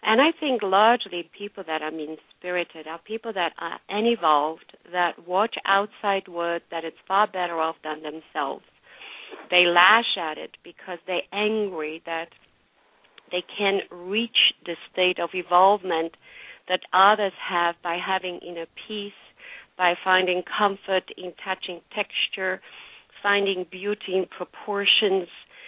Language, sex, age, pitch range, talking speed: English, female, 50-69, 180-230 Hz, 130 wpm